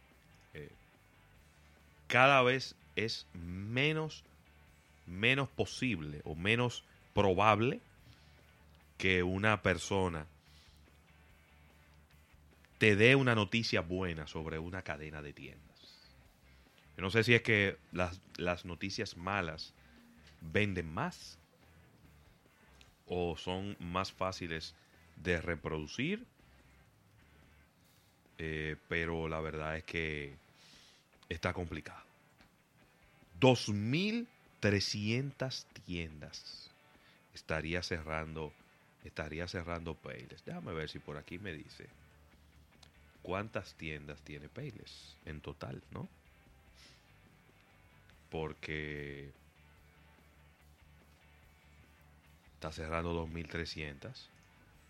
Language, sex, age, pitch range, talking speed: Spanish, male, 30-49, 75-95 Hz, 80 wpm